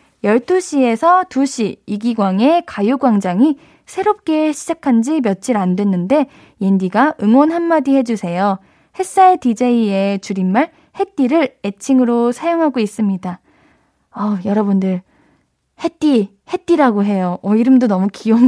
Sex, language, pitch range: female, Korean, 200-280 Hz